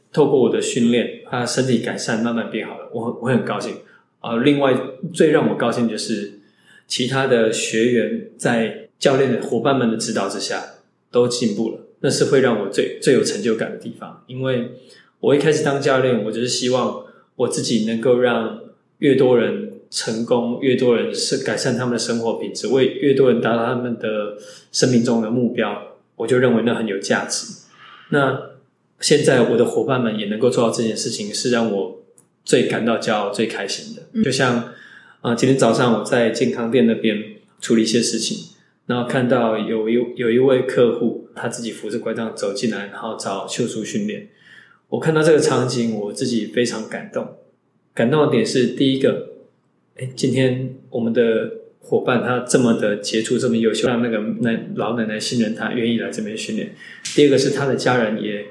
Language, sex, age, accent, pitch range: English, male, 20-39, Chinese, 115-130 Hz